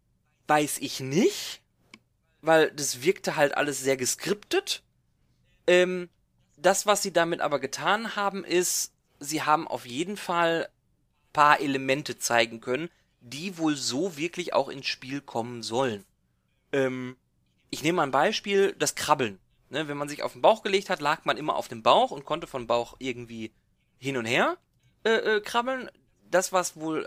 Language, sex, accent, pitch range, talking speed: German, male, German, 130-195 Hz, 165 wpm